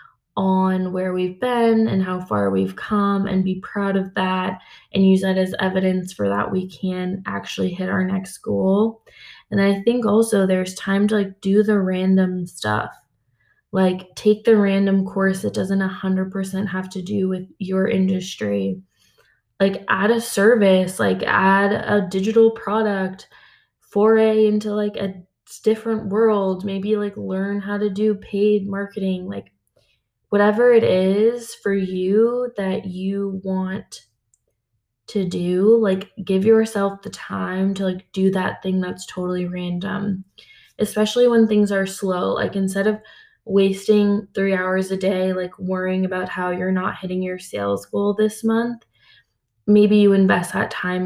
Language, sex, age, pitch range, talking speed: English, female, 20-39, 185-205 Hz, 155 wpm